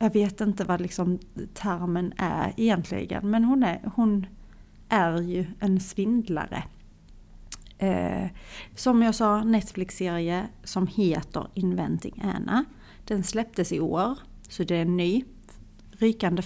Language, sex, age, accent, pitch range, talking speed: Swedish, female, 30-49, native, 175-220 Hz, 130 wpm